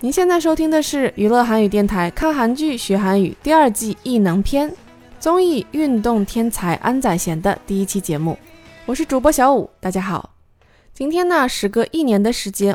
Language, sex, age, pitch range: Chinese, female, 20-39, 195-275 Hz